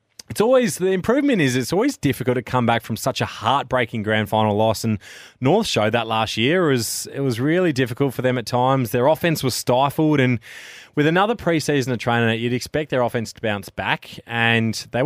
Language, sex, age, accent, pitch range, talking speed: English, male, 20-39, Australian, 110-140 Hz, 205 wpm